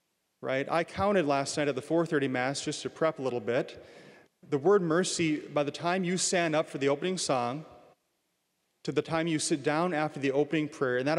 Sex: male